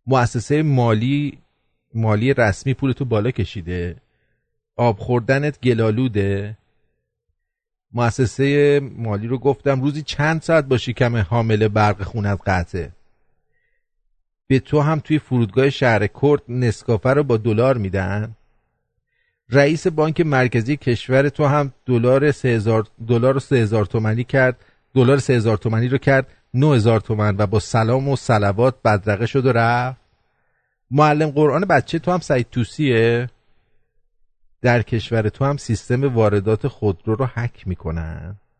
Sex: male